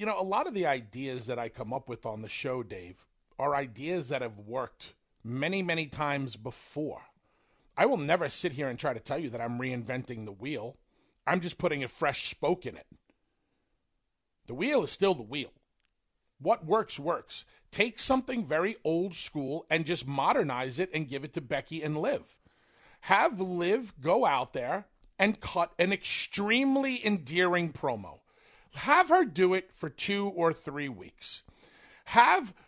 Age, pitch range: 40-59, 145-230 Hz